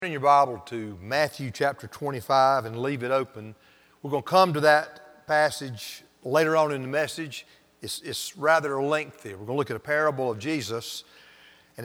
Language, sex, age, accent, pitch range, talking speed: English, male, 40-59, American, 125-165 Hz, 185 wpm